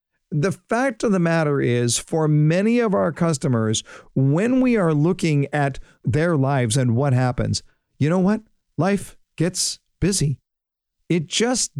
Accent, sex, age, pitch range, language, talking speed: American, male, 50-69, 135-180 Hz, English, 150 wpm